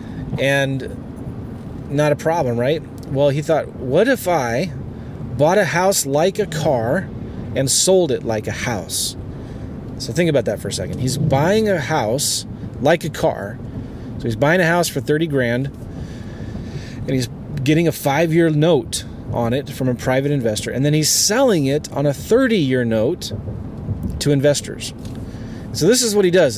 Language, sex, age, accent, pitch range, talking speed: English, male, 30-49, American, 120-165 Hz, 165 wpm